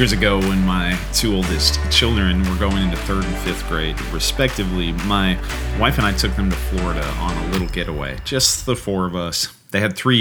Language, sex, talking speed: English, male, 205 wpm